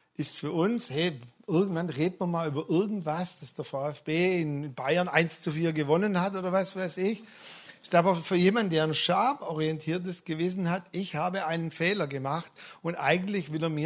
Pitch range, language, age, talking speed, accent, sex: 160-205 Hz, German, 50-69, 185 wpm, German, male